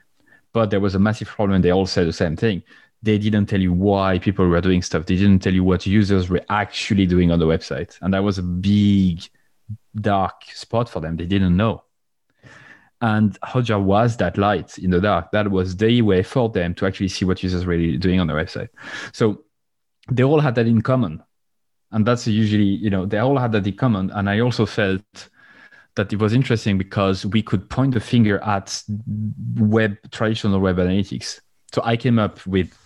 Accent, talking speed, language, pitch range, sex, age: French, 205 wpm, English, 90-110 Hz, male, 30-49